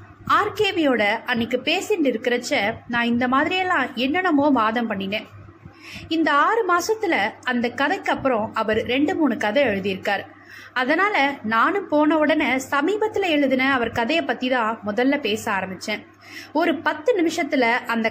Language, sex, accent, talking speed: Tamil, female, native, 125 wpm